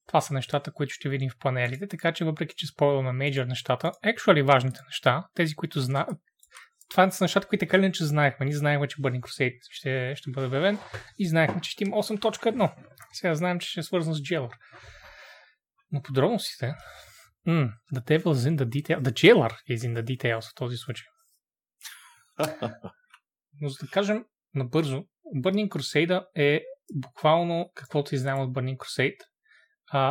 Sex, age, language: male, 20-39, Bulgarian